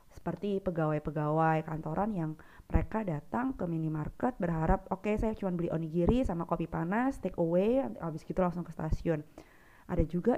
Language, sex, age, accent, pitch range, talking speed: Indonesian, female, 20-39, native, 160-210 Hz, 155 wpm